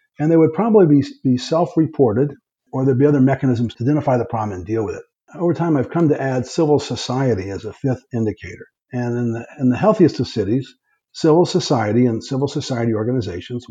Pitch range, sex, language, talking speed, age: 115-135 Hz, male, English, 195 wpm, 60-79